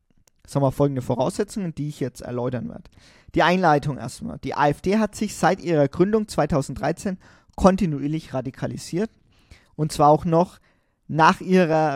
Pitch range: 130-175 Hz